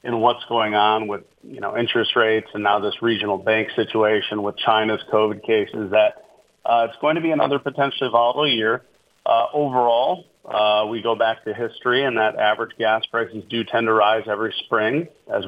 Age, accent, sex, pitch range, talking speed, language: 40-59, American, male, 105-120 Hz, 190 wpm, English